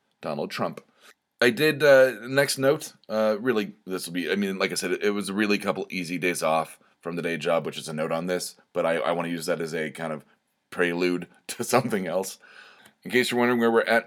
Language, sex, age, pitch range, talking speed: English, male, 30-49, 90-115 Hz, 245 wpm